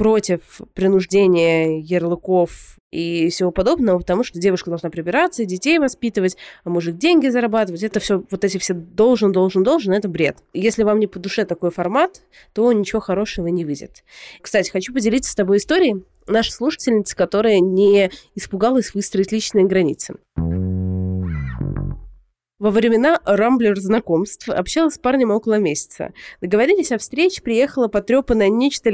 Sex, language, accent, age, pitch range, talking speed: female, Russian, native, 20-39, 185-235 Hz, 135 wpm